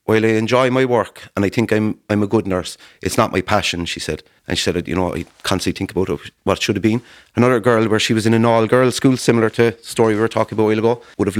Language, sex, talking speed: English, male, 290 wpm